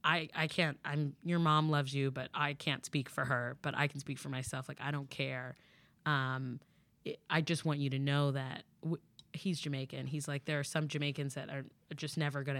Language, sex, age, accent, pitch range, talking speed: English, female, 20-39, American, 135-160 Hz, 215 wpm